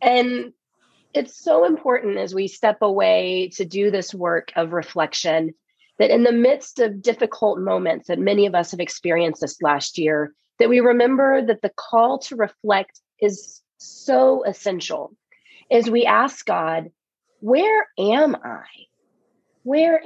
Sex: female